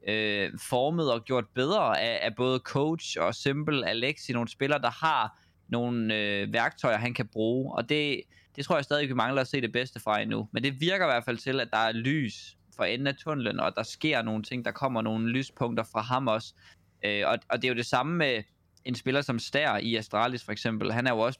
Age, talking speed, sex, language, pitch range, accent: 20-39, 235 wpm, male, Danish, 110-135 Hz, native